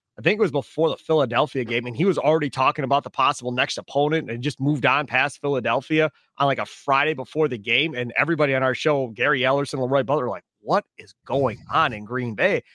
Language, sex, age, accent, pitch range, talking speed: English, male, 30-49, American, 130-165 Hz, 225 wpm